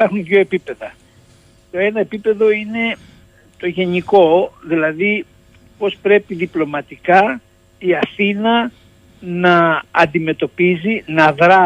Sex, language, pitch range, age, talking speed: male, Greek, 135-200 Hz, 60-79, 100 wpm